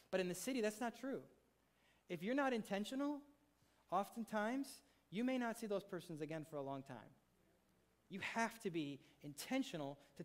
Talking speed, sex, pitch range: 170 wpm, male, 150-215 Hz